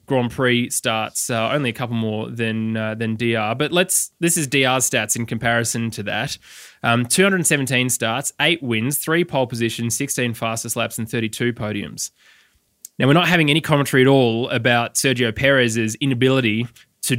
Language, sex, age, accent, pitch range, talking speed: English, male, 20-39, Australian, 115-140 Hz, 170 wpm